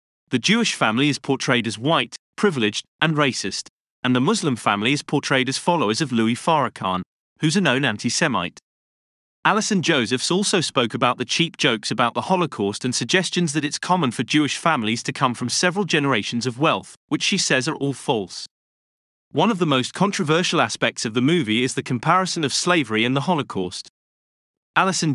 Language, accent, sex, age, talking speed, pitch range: English, British, male, 30-49, 180 wpm, 120-165 Hz